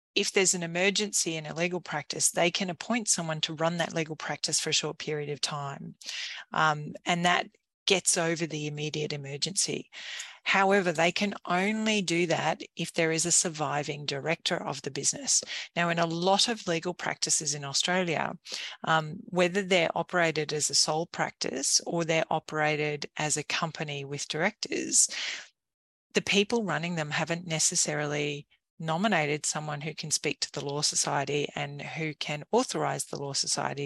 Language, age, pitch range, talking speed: English, 40-59, 150-180 Hz, 165 wpm